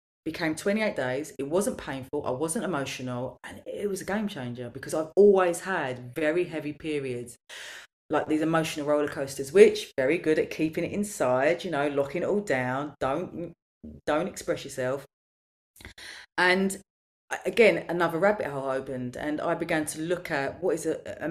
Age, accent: 30-49, British